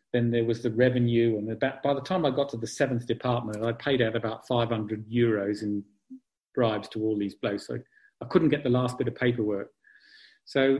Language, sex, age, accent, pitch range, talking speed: English, male, 50-69, British, 115-135 Hz, 210 wpm